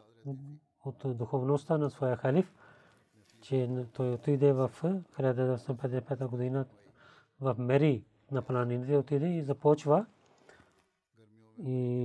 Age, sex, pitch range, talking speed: 40-59, male, 125-140 Hz, 90 wpm